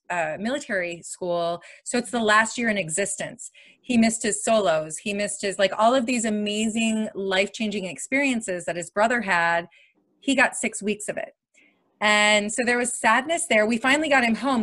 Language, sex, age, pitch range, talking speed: English, female, 30-49, 195-235 Hz, 185 wpm